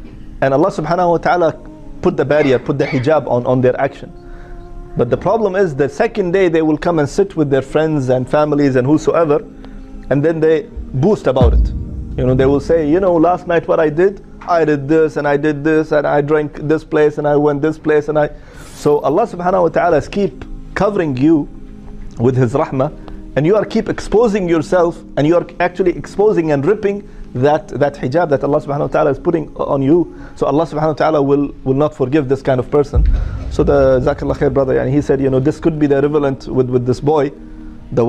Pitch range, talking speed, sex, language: 130-160 Hz, 220 wpm, male, English